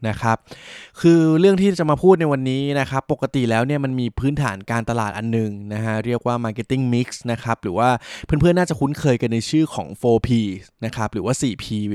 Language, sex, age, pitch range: Thai, male, 20-39, 110-135 Hz